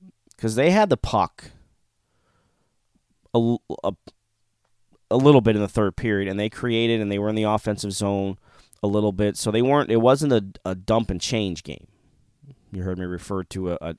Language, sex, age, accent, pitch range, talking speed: English, male, 20-39, American, 95-115 Hz, 190 wpm